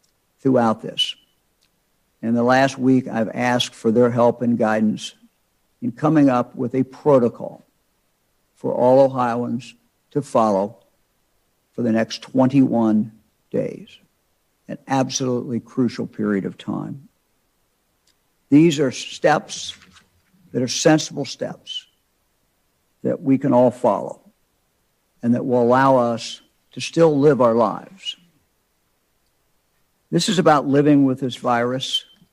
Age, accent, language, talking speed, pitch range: 60-79, American, English, 120 wpm, 115-140 Hz